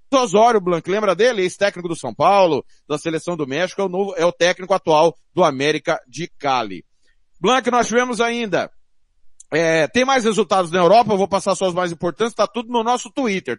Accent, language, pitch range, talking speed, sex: Brazilian, Portuguese, 185-240 Hz, 200 wpm, male